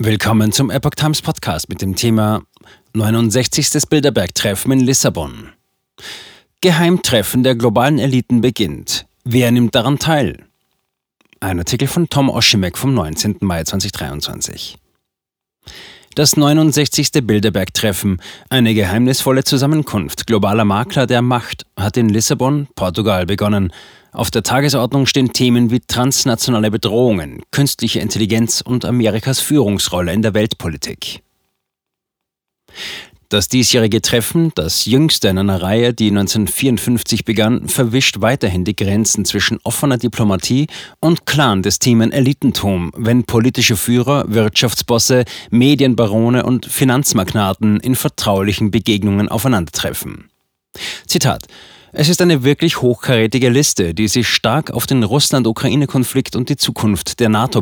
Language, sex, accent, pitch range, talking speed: German, male, German, 105-130 Hz, 120 wpm